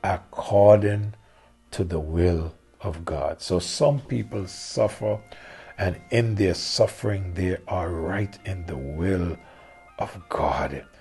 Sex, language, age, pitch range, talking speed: male, English, 50-69, 85-105 Hz, 120 wpm